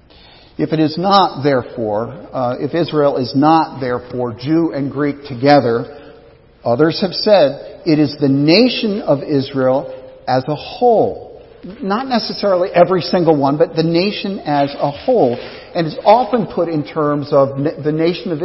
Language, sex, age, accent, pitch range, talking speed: English, male, 50-69, American, 135-175 Hz, 155 wpm